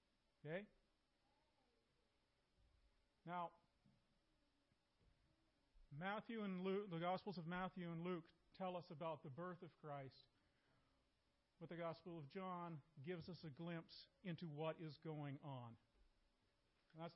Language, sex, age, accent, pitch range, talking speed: English, male, 40-59, American, 145-180 Hz, 105 wpm